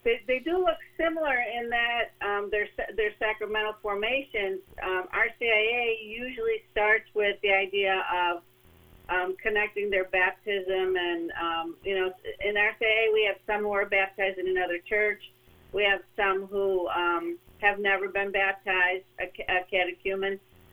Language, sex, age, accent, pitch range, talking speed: English, female, 50-69, American, 185-235 Hz, 145 wpm